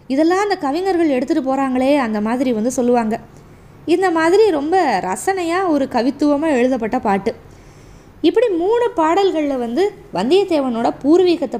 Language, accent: Tamil, native